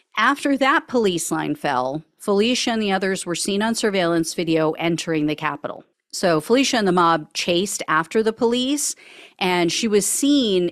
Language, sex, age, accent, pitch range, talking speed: English, female, 40-59, American, 160-215 Hz, 170 wpm